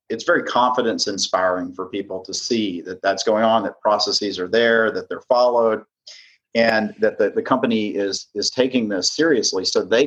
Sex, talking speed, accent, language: male, 180 wpm, American, English